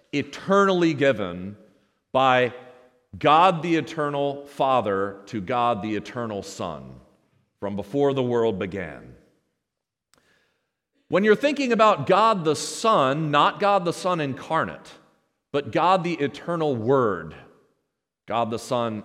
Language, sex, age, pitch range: English, male, 40-59, 135-190 Hz